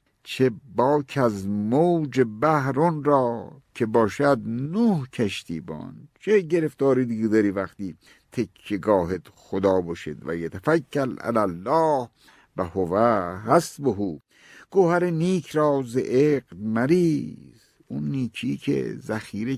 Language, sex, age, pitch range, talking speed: Persian, male, 50-69, 105-150 Hz, 115 wpm